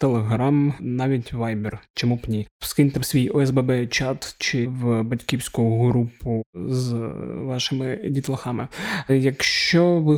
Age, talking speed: 20-39, 110 wpm